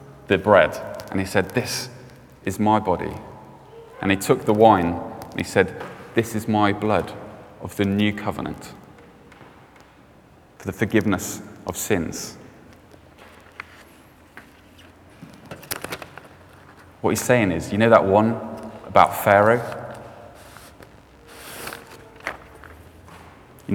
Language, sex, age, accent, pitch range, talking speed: English, male, 30-49, British, 90-110 Hz, 105 wpm